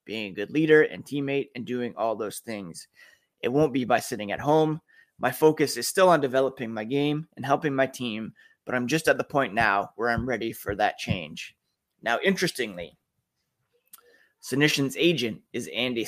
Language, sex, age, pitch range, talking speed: English, male, 20-39, 125-160 Hz, 185 wpm